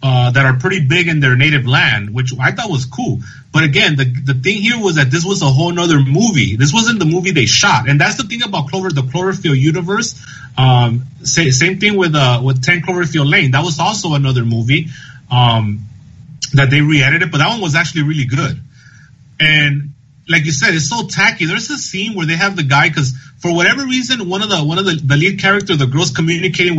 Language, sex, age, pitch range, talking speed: English, male, 30-49, 135-180 Hz, 225 wpm